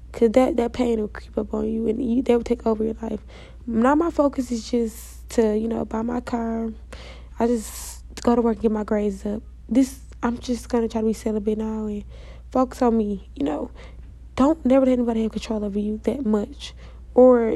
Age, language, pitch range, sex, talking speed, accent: 10-29, English, 220-255 Hz, female, 220 wpm, American